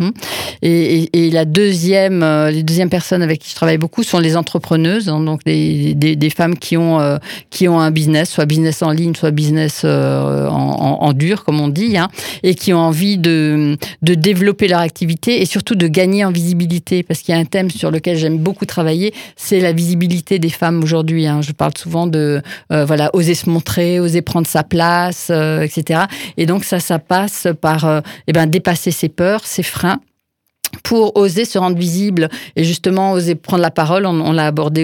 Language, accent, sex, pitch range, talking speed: French, French, female, 160-190 Hz, 210 wpm